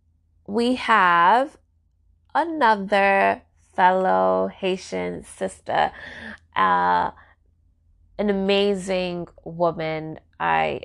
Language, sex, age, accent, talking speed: English, female, 20-39, American, 60 wpm